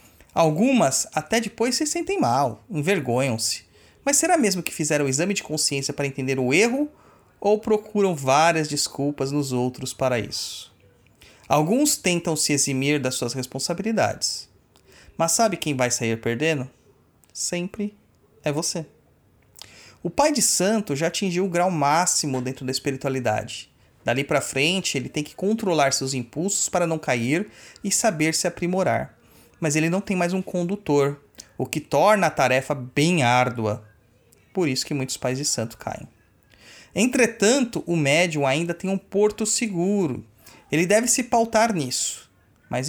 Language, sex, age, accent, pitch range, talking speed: Portuguese, male, 30-49, Brazilian, 130-190 Hz, 150 wpm